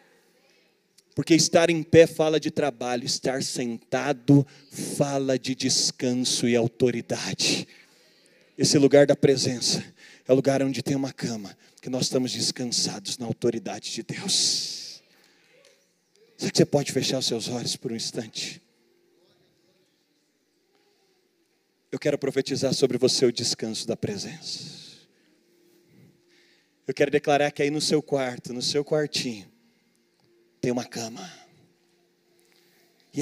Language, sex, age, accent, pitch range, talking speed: Portuguese, male, 30-49, Brazilian, 130-175 Hz, 125 wpm